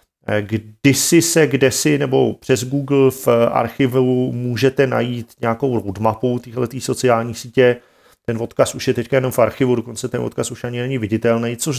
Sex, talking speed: male, 160 wpm